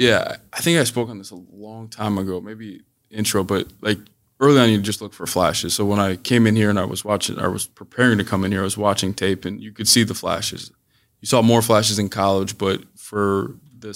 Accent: American